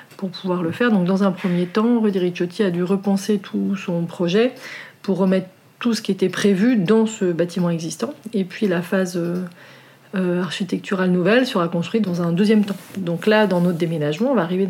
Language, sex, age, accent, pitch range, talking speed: French, female, 40-59, French, 175-205 Hz, 200 wpm